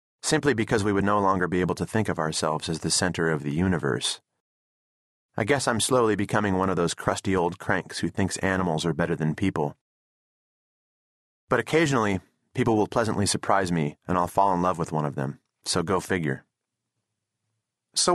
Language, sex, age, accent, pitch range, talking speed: English, male, 30-49, American, 85-115 Hz, 185 wpm